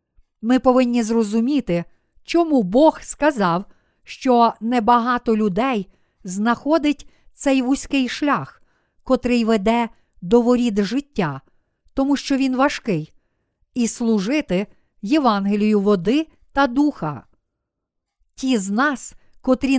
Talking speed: 95 wpm